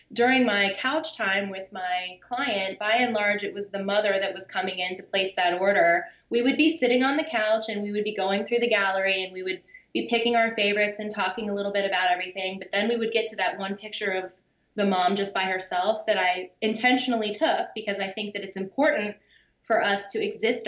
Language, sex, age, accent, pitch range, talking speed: English, female, 20-39, American, 200-250 Hz, 230 wpm